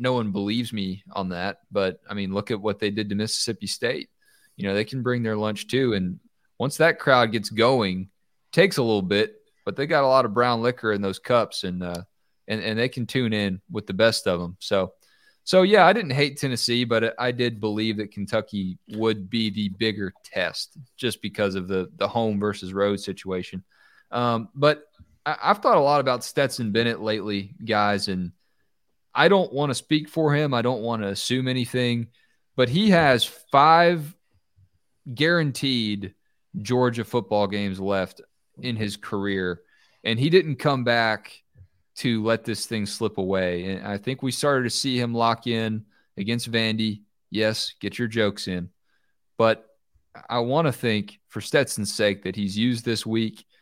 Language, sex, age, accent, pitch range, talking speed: English, male, 20-39, American, 100-125 Hz, 185 wpm